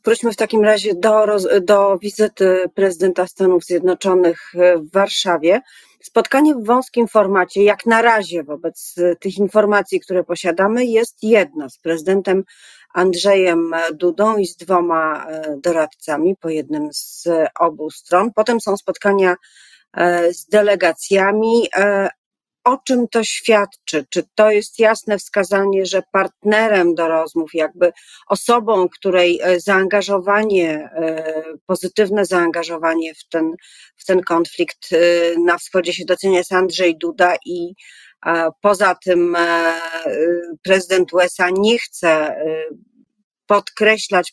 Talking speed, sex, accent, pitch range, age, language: 110 wpm, female, native, 170-205 Hz, 40-59, Polish